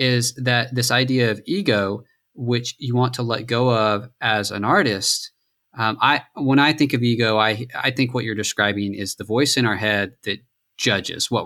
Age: 20-39